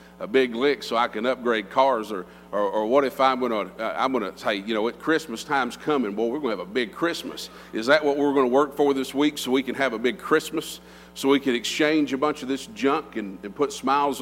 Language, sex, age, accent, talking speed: English, male, 50-69, American, 255 wpm